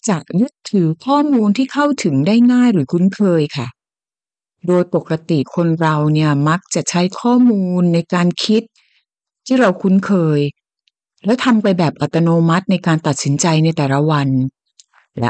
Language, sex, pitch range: Thai, female, 165-220 Hz